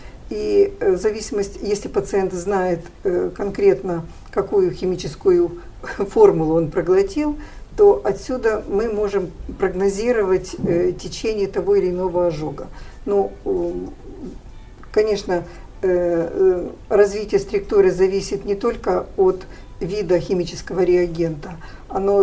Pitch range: 185-265 Hz